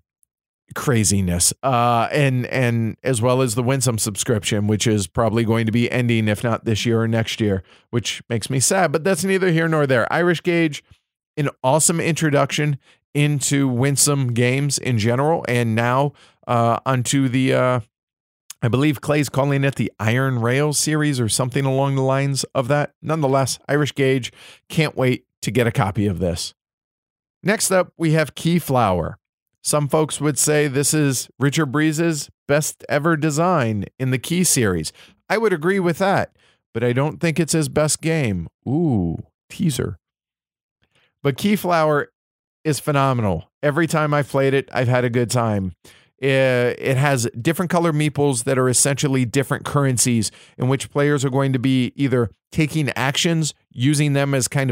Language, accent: English, American